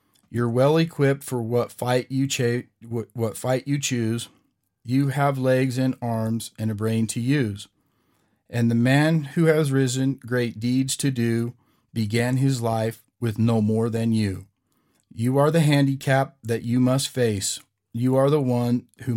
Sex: male